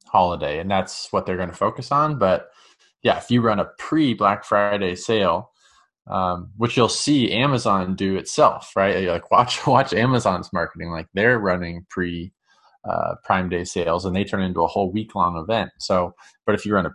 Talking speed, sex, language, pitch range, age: 190 wpm, male, English, 90-110 Hz, 20-39